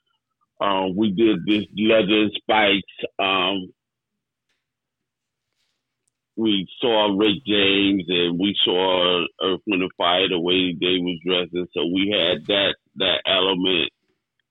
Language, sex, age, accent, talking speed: English, male, 50-69, American, 110 wpm